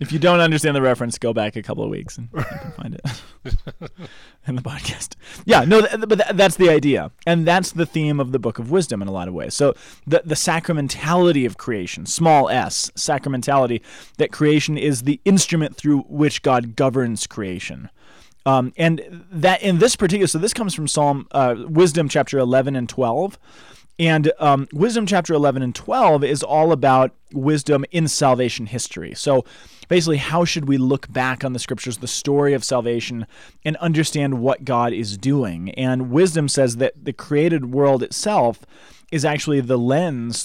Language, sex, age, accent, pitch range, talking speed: English, male, 20-39, American, 125-165 Hz, 180 wpm